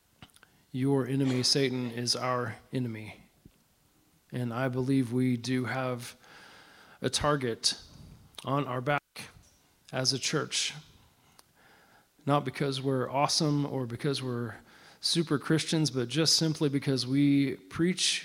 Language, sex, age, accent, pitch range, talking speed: English, male, 40-59, American, 125-145 Hz, 115 wpm